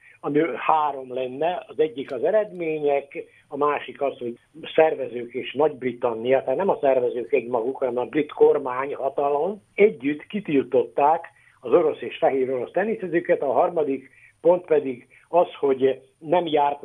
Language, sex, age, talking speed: Hungarian, male, 60-79, 140 wpm